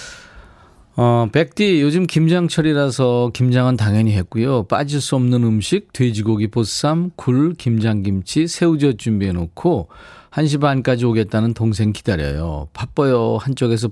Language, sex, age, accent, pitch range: Korean, male, 40-59, native, 100-140 Hz